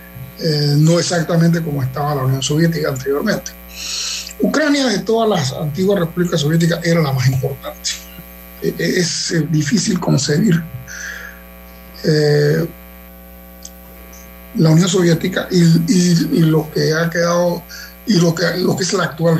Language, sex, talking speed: Spanish, male, 130 wpm